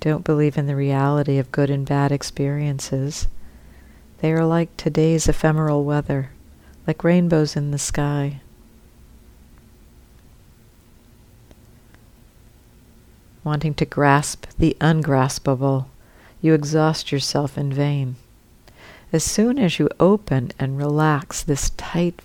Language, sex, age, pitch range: English, female, 50-69, 135-155 Hz